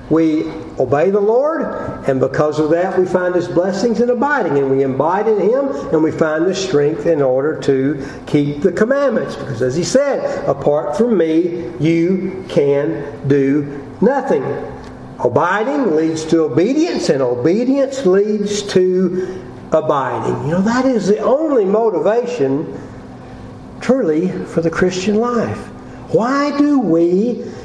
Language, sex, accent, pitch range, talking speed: English, male, American, 155-235 Hz, 140 wpm